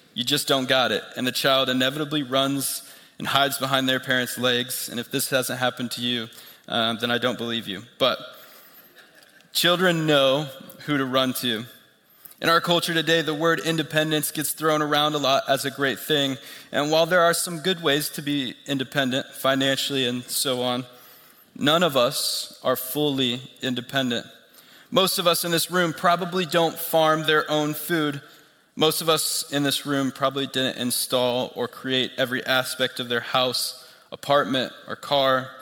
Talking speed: 175 wpm